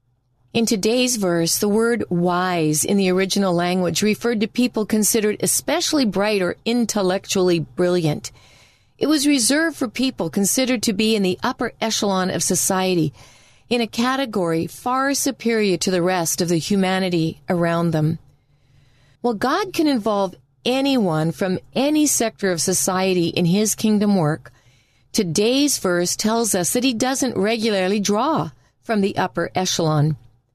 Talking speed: 145 wpm